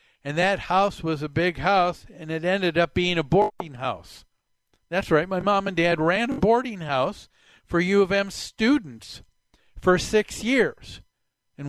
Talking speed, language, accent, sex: 175 wpm, English, American, male